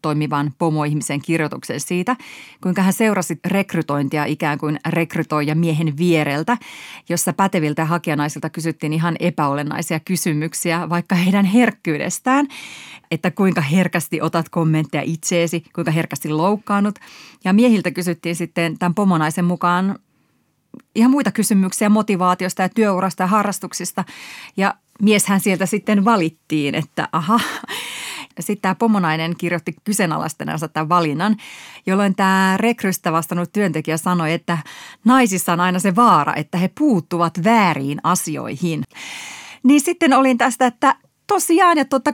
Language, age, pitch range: Finnish, 30-49, 165-210 Hz